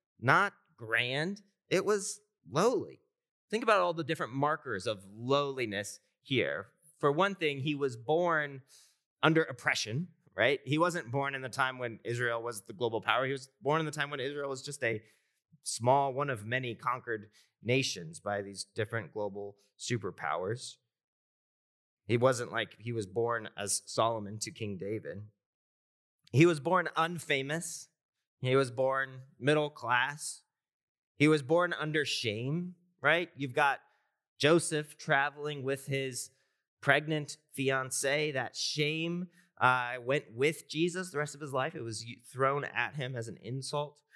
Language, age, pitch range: English, 30-49, 120-160 Hz